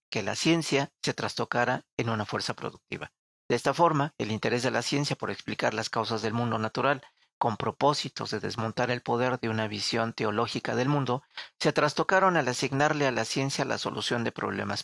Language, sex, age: Spanish, male, 40-59